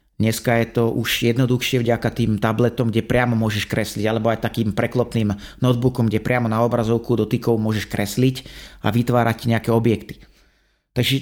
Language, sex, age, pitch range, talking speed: Slovak, male, 30-49, 110-125 Hz, 155 wpm